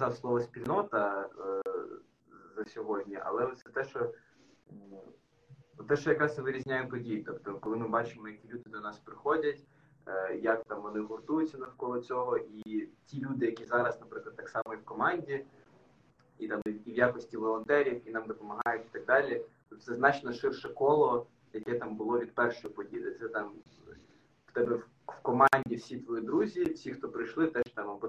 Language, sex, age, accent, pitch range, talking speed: Ukrainian, male, 20-39, native, 115-170 Hz, 170 wpm